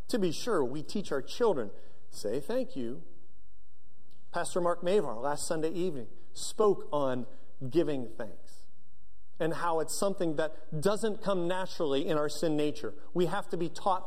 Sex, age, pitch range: male, 40-59, 130-200 Hz